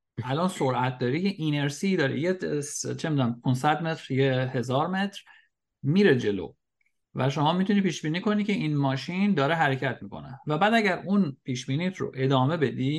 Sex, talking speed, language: male, 160 wpm, Persian